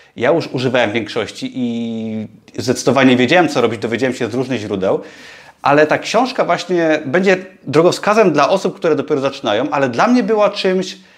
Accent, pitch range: native, 130-170 Hz